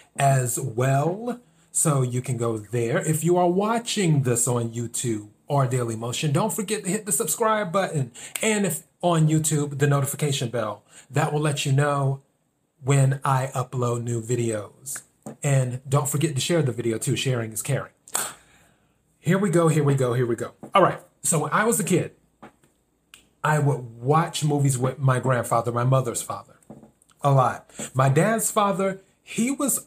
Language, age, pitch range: English, 30-49, 125-160 Hz